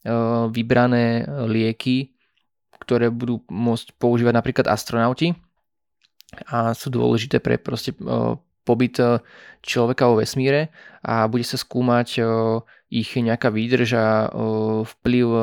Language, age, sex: Slovak, 20-39, male